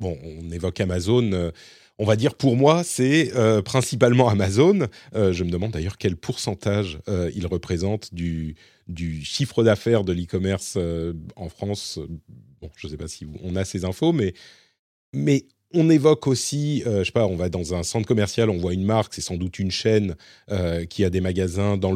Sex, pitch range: male, 90-120 Hz